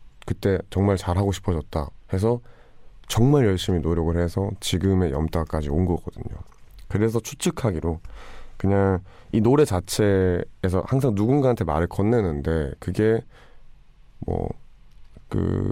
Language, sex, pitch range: Korean, male, 85-110 Hz